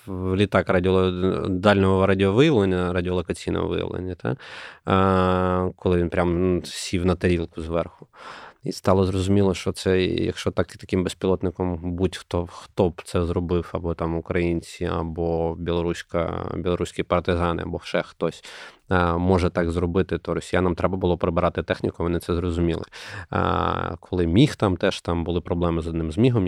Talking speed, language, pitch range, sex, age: 145 wpm, Ukrainian, 85-100 Hz, male, 20-39